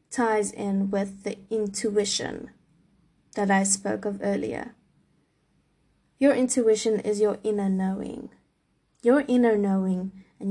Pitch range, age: 195-225 Hz, 20-39